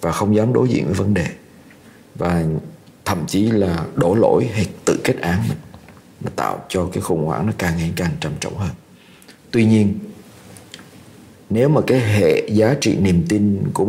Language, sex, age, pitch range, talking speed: Vietnamese, male, 50-69, 90-110 Hz, 185 wpm